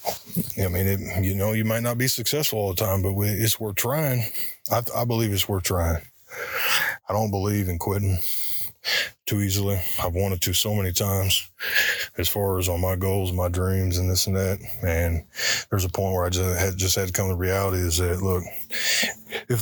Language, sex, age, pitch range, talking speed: English, male, 20-39, 95-110 Hz, 195 wpm